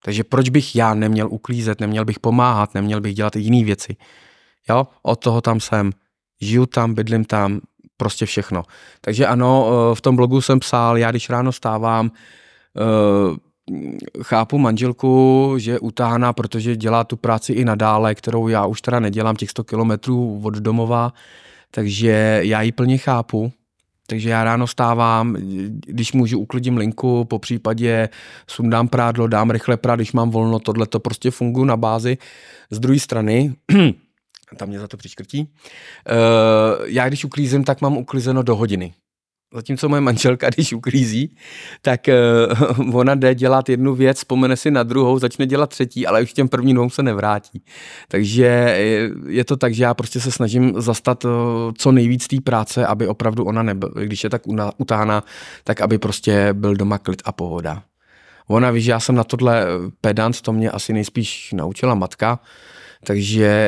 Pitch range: 110-125 Hz